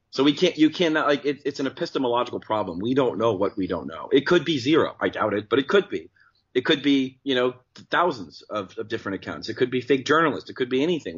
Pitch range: 95-125 Hz